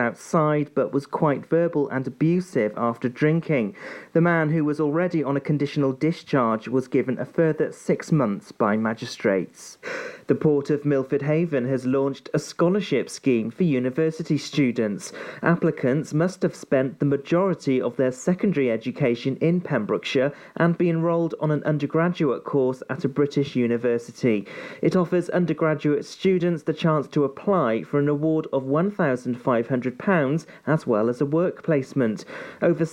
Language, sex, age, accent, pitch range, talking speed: English, male, 40-59, British, 130-165 Hz, 150 wpm